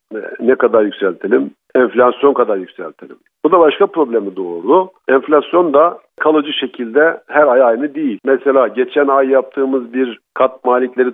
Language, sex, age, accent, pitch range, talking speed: Turkish, male, 50-69, native, 115-145 Hz, 140 wpm